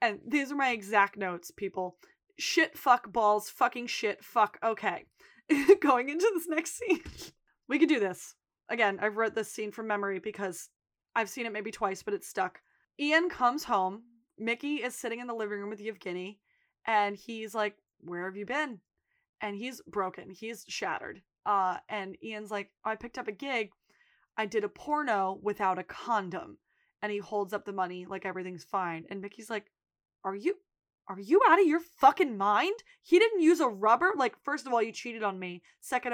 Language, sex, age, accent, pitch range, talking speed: English, female, 20-39, American, 200-250 Hz, 190 wpm